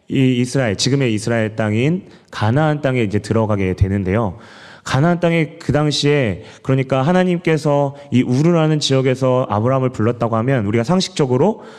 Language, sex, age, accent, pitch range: Korean, male, 30-49, native, 110-150 Hz